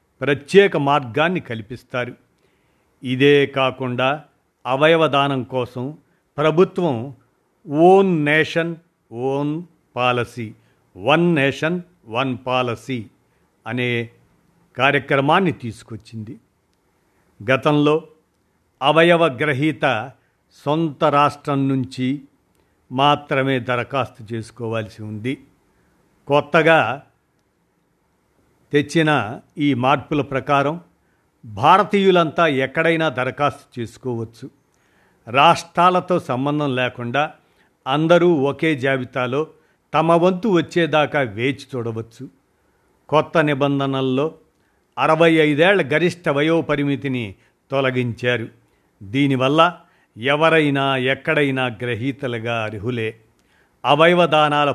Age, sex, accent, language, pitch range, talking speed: 50-69, male, native, Telugu, 125-155 Hz, 70 wpm